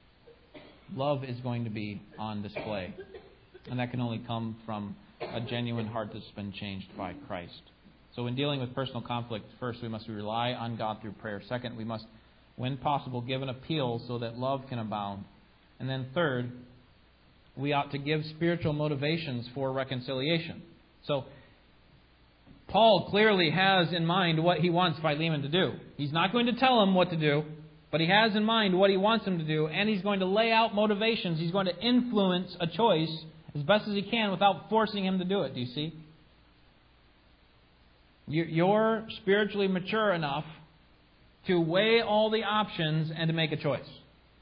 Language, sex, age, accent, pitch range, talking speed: English, male, 40-59, American, 110-175 Hz, 180 wpm